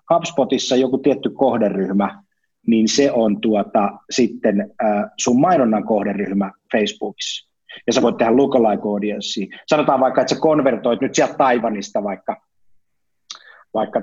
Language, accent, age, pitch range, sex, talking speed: Finnish, native, 30-49, 105-150 Hz, male, 125 wpm